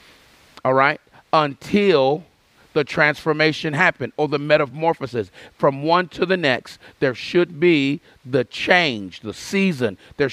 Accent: American